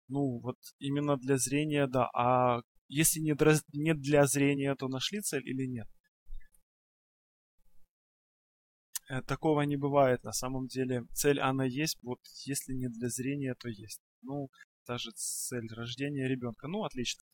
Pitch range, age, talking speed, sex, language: 120-145 Hz, 20-39, 140 wpm, male, Russian